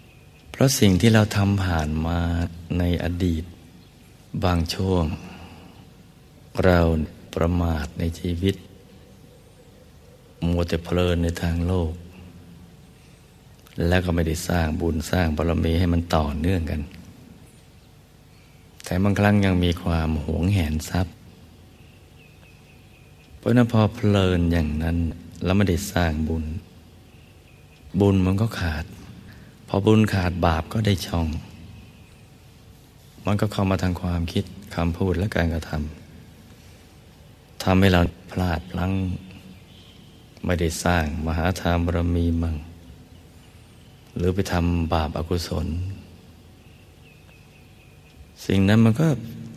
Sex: male